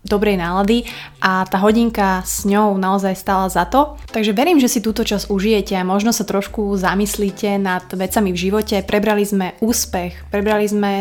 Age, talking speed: 20-39, 175 wpm